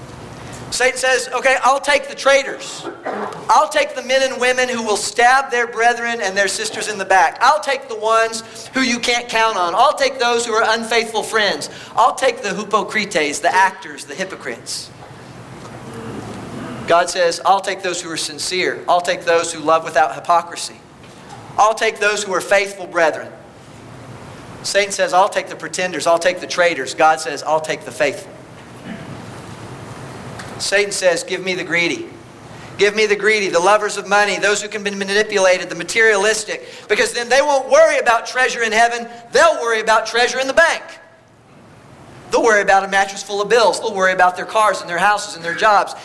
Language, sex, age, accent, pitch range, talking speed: English, male, 40-59, American, 180-240 Hz, 185 wpm